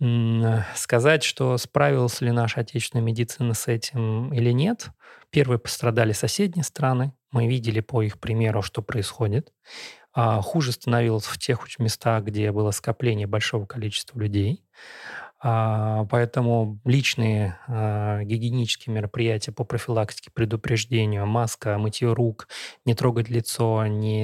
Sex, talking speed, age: male, 115 wpm, 30-49